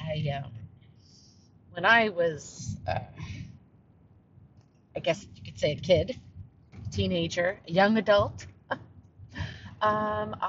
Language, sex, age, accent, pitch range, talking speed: English, female, 40-59, American, 105-160 Hz, 110 wpm